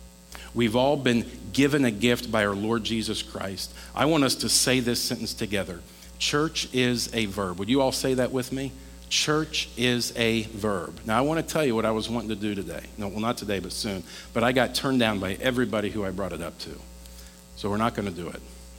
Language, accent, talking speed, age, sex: English, American, 235 wpm, 50-69, male